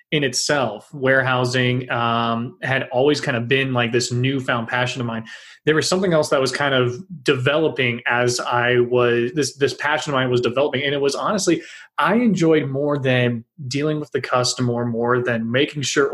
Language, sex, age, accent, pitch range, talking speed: English, male, 30-49, American, 120-150 Hz, 185 wpm